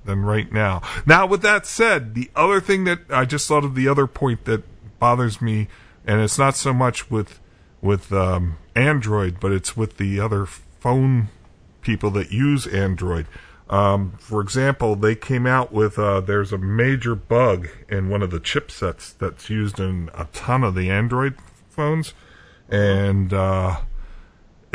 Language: English